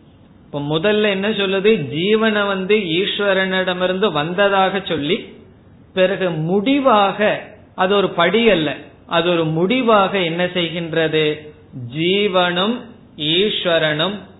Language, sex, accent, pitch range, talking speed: Tamil, male, native, 160-210 Hz, 50 wpm